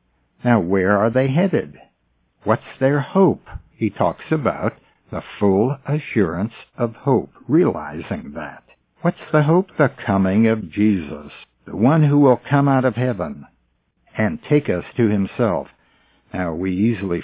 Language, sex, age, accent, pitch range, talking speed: English, male, 60-79, American, 95-135 Hz, 145 wpm